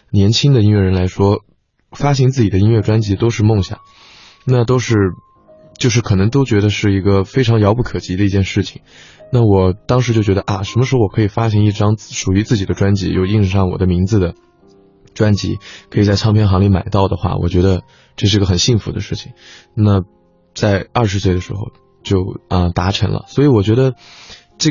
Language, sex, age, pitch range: Chinese, male, 20-39, 95-115 Hz